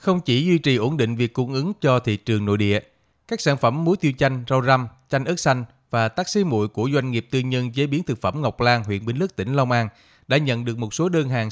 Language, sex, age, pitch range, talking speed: Vietnamese, male, 20-39, 120-150 Hz, 275 wpm